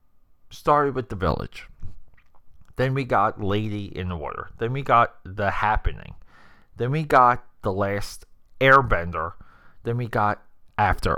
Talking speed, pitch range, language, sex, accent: 140 wpm, 90-125 Hz, English, male, American